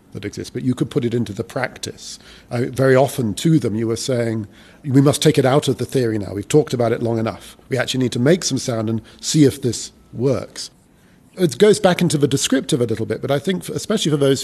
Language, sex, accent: English, male, British